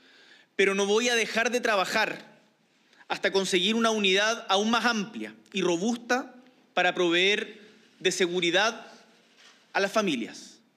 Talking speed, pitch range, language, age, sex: 130 wpm, 200-250 Hz, Spanish, 30-49, male